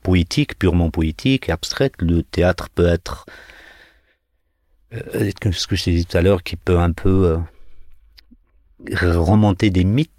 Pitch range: 85-95 Hz